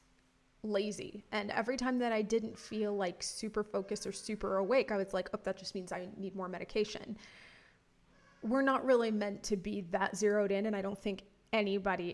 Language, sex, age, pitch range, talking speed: English, female, 20-39, 195-225 Hz, 195 wpm